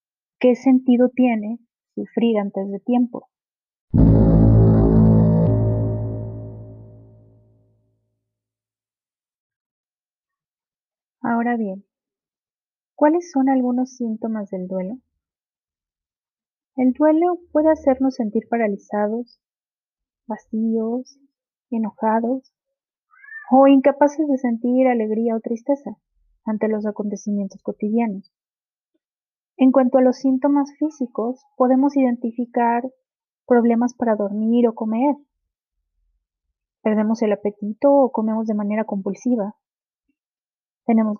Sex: female